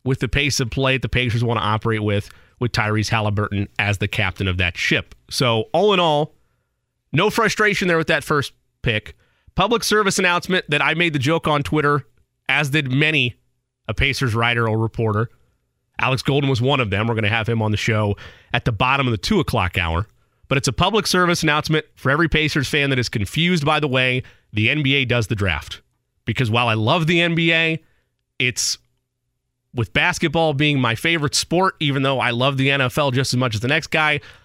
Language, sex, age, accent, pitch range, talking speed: English, male, 30-49, American, 115-155 Hz, 205 wpm